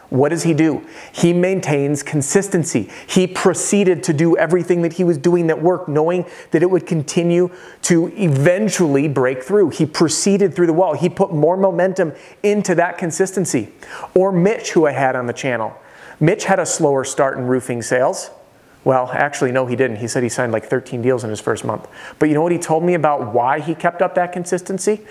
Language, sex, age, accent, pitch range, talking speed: English, male, 40-59, American, 145-180 Hz, 205 wpm